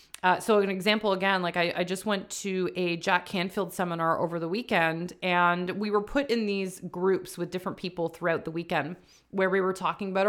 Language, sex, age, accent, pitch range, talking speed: English, female, 30-49, American, 175-220 Hz, 210 wpm